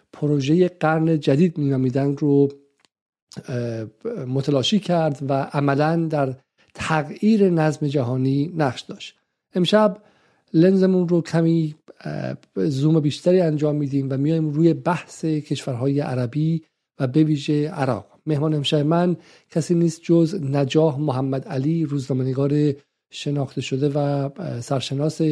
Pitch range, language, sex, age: 140-165 Hz, Persian, male, 50-69